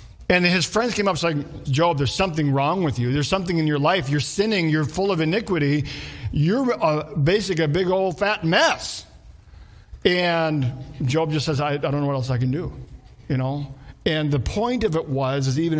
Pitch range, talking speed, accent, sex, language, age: 130-165 Hz, 200 wpm, American, male, English, 50-69